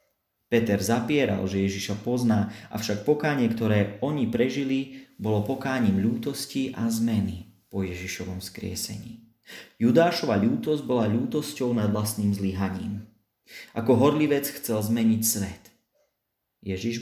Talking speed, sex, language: 110 wpm, male, Slovak